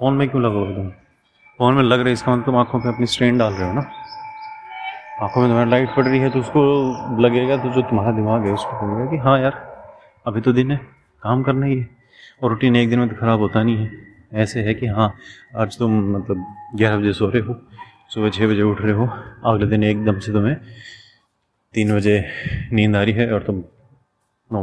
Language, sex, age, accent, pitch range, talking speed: Hindi, male, 30-49, native, 105-130 Hz, 220 wpm